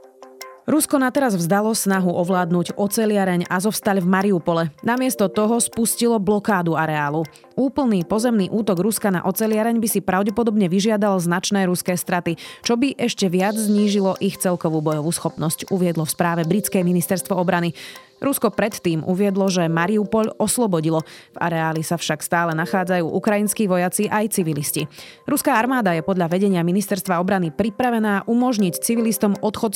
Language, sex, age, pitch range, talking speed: Slovak, female, 30-49, 175-215 Hz, 145 wpm